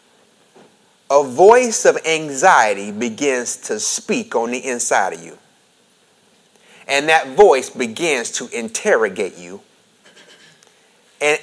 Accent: American